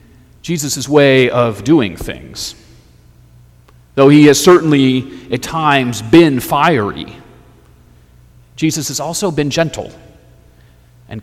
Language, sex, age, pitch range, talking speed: English, male, 40-59, 95-150 Hz, 100 wpm